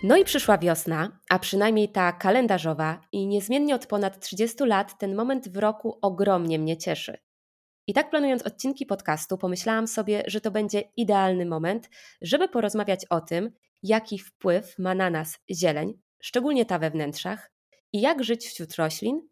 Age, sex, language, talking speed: 20-39, female, Polish, 160 wpm